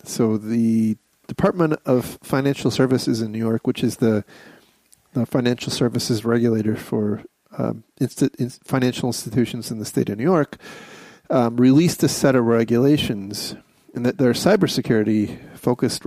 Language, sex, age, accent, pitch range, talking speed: English, male, 30-49, American, 115-135 Hz, 140 wpm